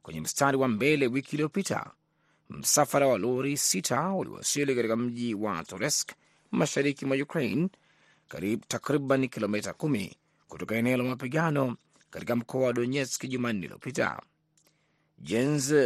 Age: 30-49